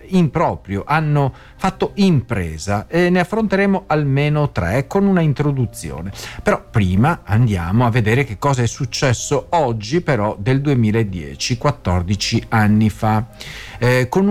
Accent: native